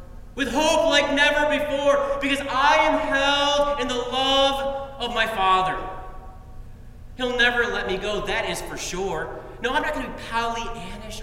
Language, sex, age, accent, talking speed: English, male, 30-49, American, 165 wpm